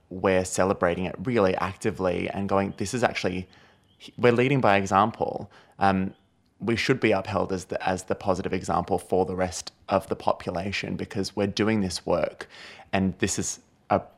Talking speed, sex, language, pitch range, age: 170 wpm, male, English, 95-105 Hz, 20-39